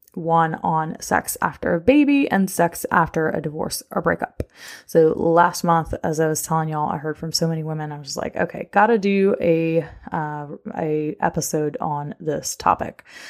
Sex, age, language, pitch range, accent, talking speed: female, 20-39, English, 160-195 Hz, American, 185 wpm